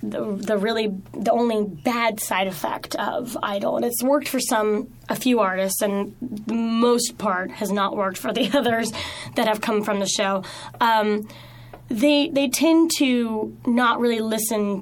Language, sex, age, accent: English, female, 10-29, American